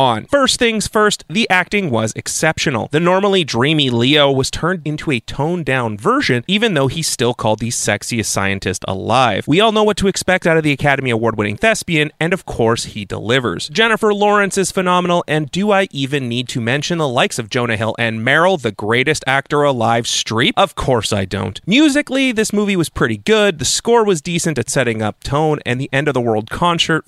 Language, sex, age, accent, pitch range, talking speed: English, male, 30-49, American, 115-170 Hz, 195 wpm